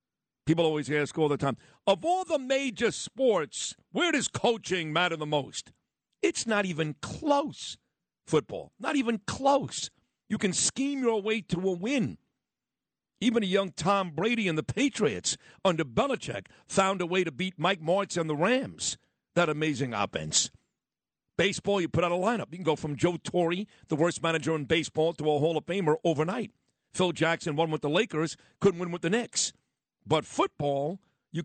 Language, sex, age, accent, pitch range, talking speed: English, male, 50-69, American, 145-185 Hz, 175 wpm